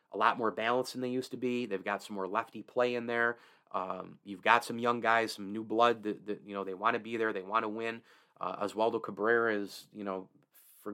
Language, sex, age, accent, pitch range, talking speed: English, male, 30-49, American, 100-115 Hz, 240 wpm